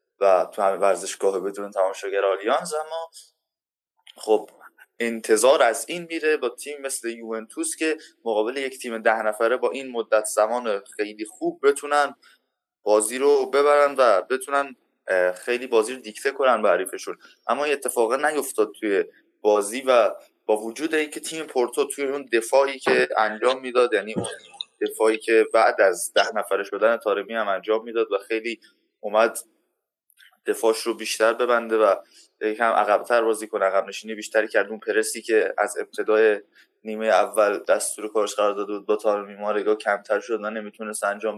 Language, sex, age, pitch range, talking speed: Persian, male, 20-39, 110-145 Hz, 160 wpm